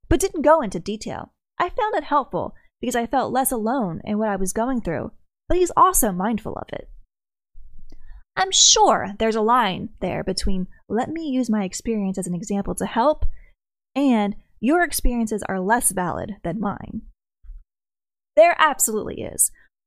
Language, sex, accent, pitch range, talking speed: English, female, American, 205-300 Hz, 165 wpm